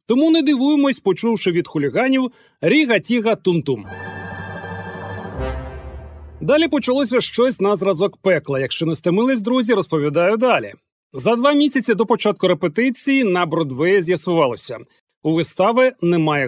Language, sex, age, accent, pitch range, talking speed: Ukrainian, male, 40-59, native, 150-245 Hz, 115 wpm